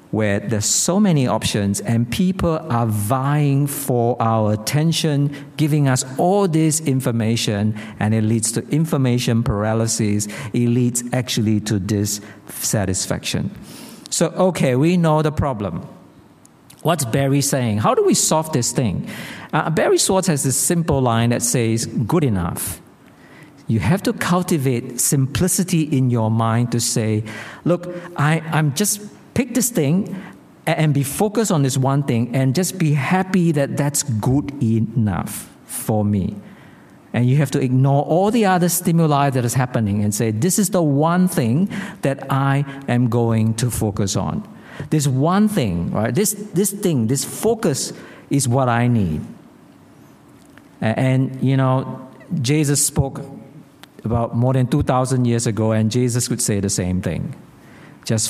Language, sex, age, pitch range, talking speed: English, male, 50-69, 115-160 Hz, 150 wpm